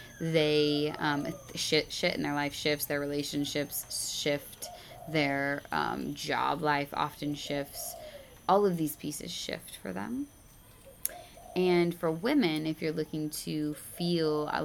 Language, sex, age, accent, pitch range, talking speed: English, female, 20-39, American, 145-155 Hz, 135 wpm